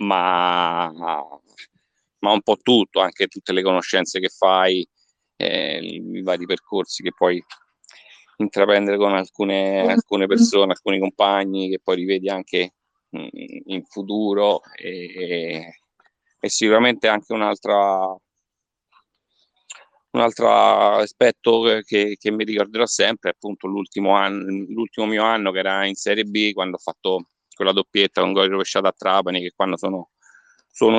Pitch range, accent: 95-105 Hz, native